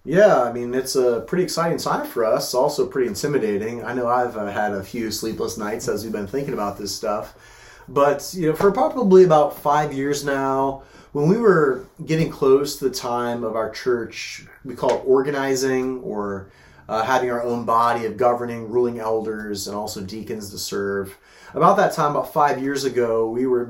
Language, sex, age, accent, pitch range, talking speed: English, male, 30-49, American, 110-130 Hz, 190 wpm